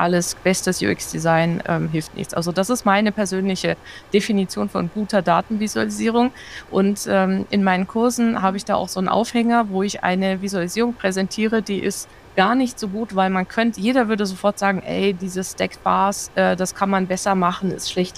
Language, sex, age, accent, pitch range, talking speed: German, female, 20-39, German, 190-225 Hz, 190 wpm